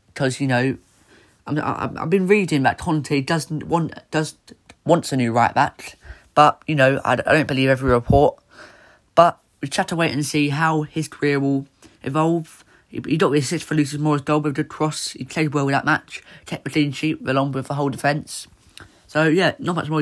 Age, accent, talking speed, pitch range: 20-39, British, 220 wpm, 130-155 Hz